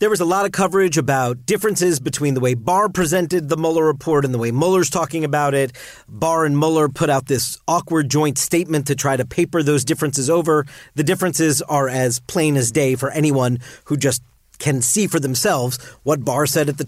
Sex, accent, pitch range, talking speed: male, American, 140-205 Hz, 210 wpm